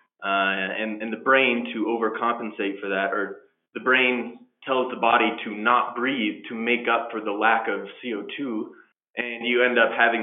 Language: English